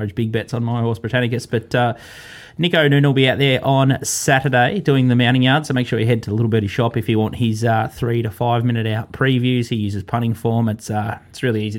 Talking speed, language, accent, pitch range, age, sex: 250 wpm, English, Australian, 105-125 Hz, 20-39, male